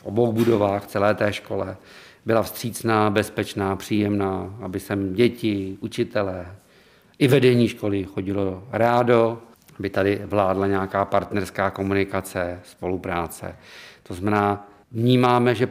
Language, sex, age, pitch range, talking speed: Czech, male, 50-69, 100-115 Hz, 110 wpm